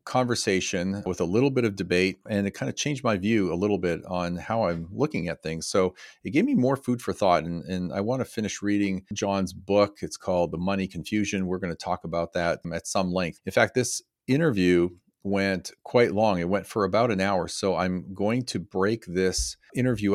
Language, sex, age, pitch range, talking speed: English, male, 40-59, 95-115 Hz, 220 wpm